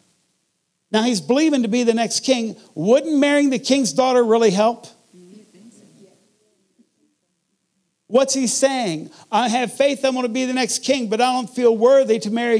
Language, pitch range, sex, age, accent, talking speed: English, 180-235 Hz, male, 50-69, American, 160 wpm